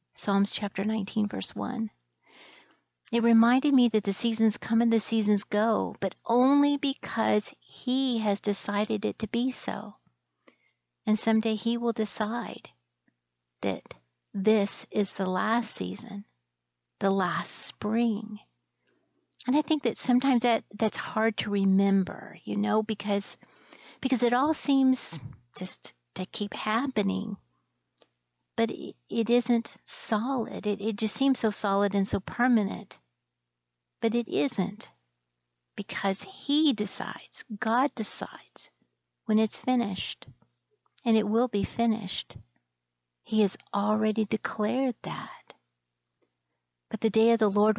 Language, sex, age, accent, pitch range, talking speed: English, female, 50-69, American, 195-230 Hz, 130 wpm